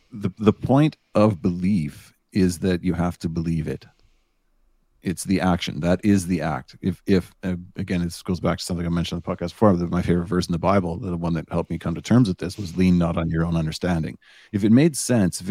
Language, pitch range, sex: English, 85-100 Hz, male